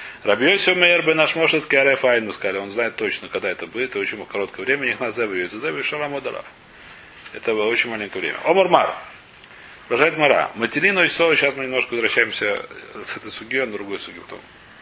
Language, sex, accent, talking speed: Russian, male, native, 160 wpm